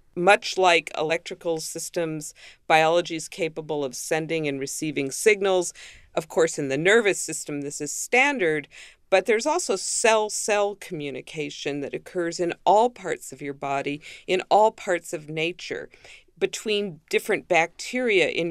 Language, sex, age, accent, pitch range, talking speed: English, female, 50-69, American, 145-190 Hz, 140 wpm